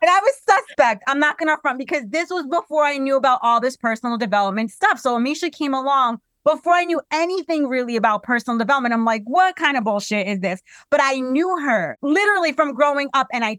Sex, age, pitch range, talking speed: female, 30-49, 235-300 Hz, 225 wpm